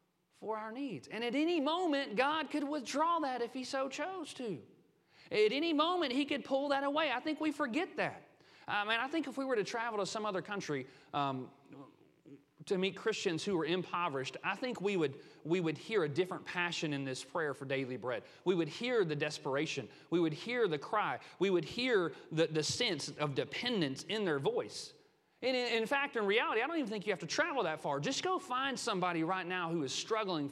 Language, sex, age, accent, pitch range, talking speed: English, male, 30-49, American, 165-275 Hz, 215 wpm